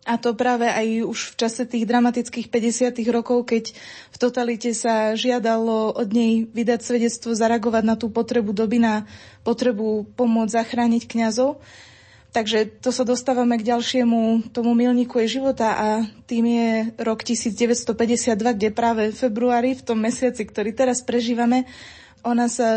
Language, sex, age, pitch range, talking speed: Slovak, female, 20-39, 225-245 Hz, 150 wpm